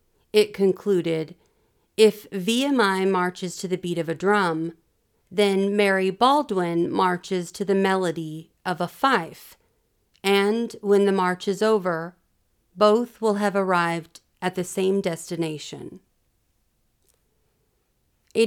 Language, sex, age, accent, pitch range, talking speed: English, female, 40-59, American, 175-215 Hz, 115 wpm